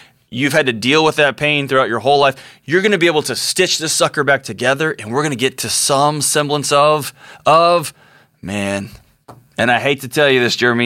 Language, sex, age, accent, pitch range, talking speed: English, male, 20-39, American, 120-150 Hz, 225 wpm